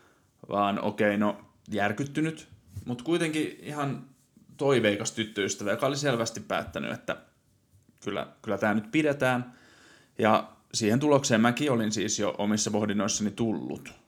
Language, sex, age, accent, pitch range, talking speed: Finnish, male, 30-49, native, 105-130 Hz, 130 wpm